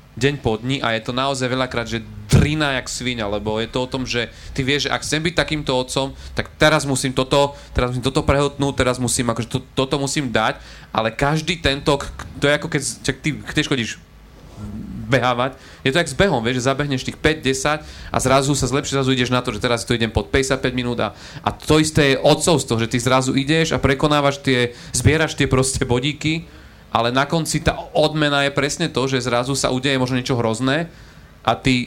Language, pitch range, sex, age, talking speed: Slovak, 120-140 Hz, male, 30-49, 215 wpm